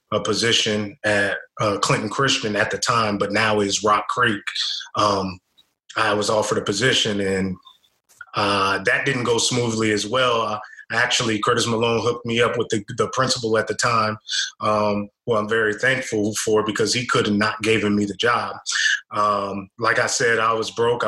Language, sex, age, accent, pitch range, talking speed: English, male, 20-39, American, 105-125 Hz, 175 wpm